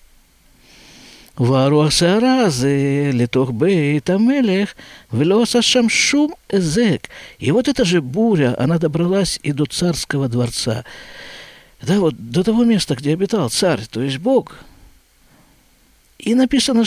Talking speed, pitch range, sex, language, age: 95 wpm, 120-200 Hz, male, Russian, 50-69